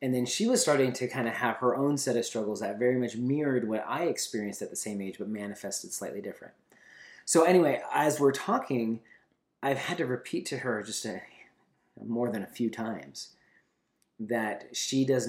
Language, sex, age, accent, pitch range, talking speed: English, male, 30-49, American, 105-130 Hz, 190 wpm